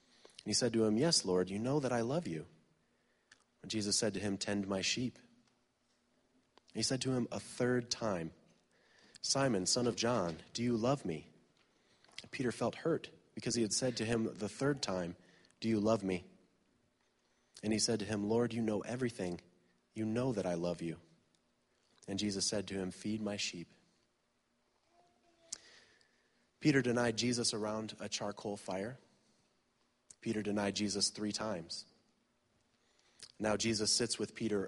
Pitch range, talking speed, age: 100-120 Hz, 155 wpm, 30-49